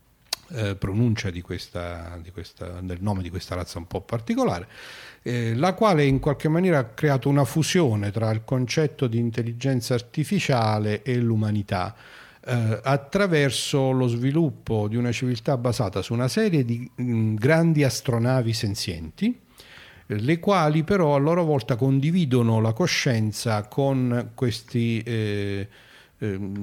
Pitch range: 105-140 Hz